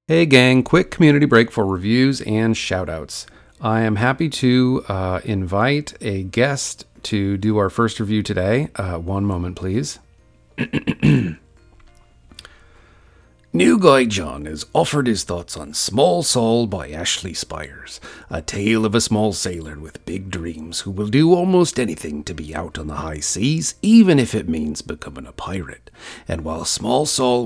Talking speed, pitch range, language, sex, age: 160 wpm, 85-125 Hz, English, male, 40-59